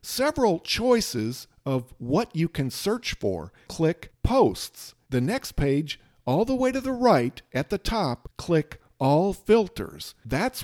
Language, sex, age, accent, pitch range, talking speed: English, male, 50-69, American, 135-185 Hz, 145 wpm